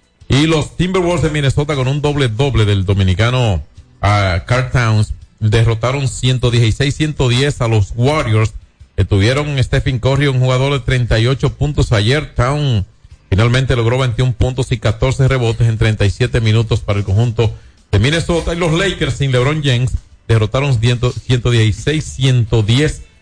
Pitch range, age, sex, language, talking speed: 105-135 Hz, 40-59, male, Spanish, 145 wpm